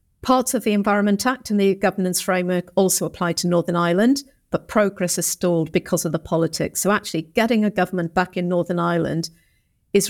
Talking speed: 190 wpm